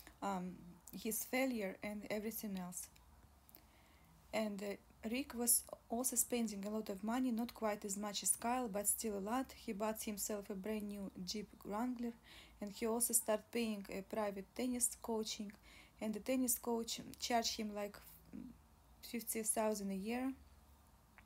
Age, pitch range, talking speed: 20-39, 205-235 Hz, 150 wpm